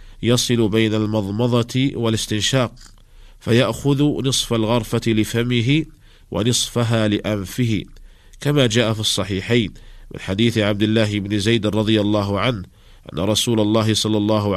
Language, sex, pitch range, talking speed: Arabic, male, 105-120 Hz, 115 wpm